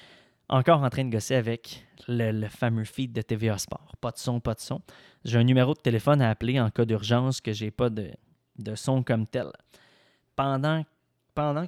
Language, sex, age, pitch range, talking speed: French, male, 20-39, 120-150 Hz, 205 wpm